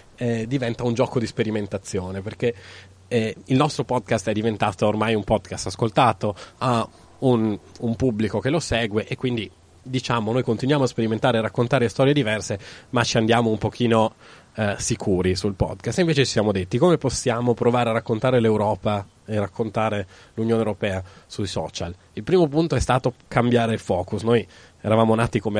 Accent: native